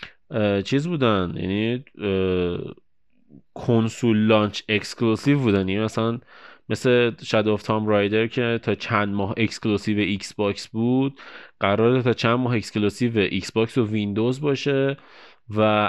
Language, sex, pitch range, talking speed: Persian, male, 105-130 Hz, 120 wpm